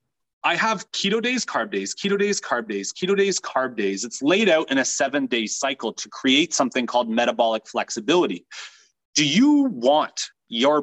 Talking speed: 175 wpm